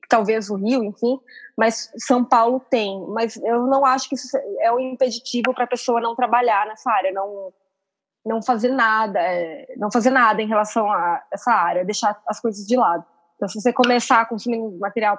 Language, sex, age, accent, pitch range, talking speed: Portuguese, female, 20-39, Brazilian, 215-270 Hz, 195 wpm